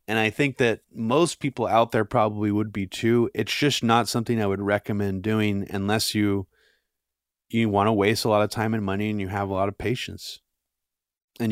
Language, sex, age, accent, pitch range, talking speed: English, male, 30-49, American, 95-110 Hz, 210 wpm